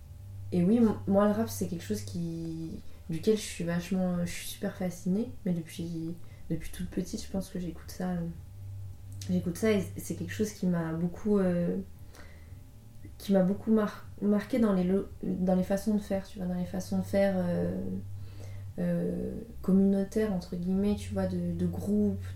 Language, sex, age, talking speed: French, female, 20-39, 185 wpm